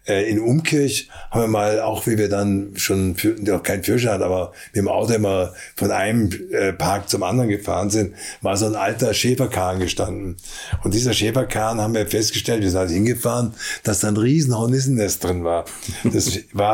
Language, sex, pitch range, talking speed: German, male, 105-135 Hz, 190 wpm